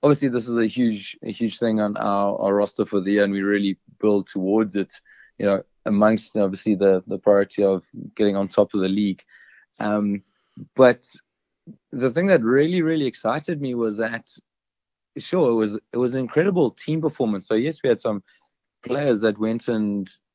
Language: English